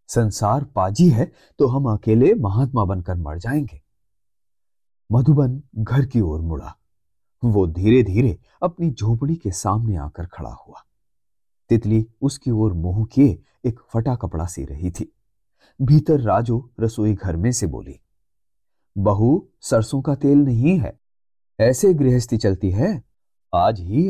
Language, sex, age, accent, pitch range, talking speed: Hindi, male, 30-49, native, 100-140 Hz, 135 wpm